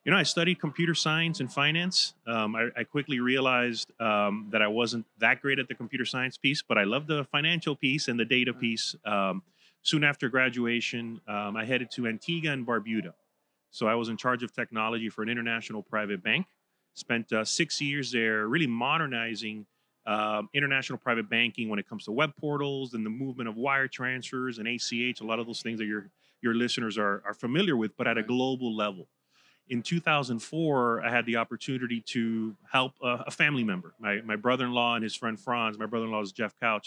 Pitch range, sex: 115-145 Hz, male